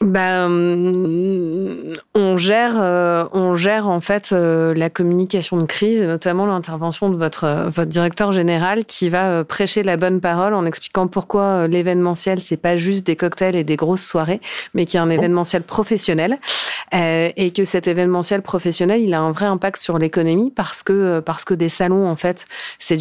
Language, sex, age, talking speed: French, female, 30-49, 170 wpm